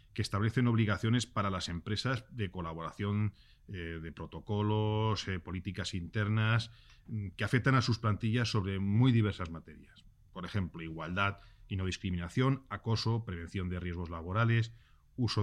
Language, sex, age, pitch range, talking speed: Spanish, male, 40-59, 95-115 Hz, 135 wpm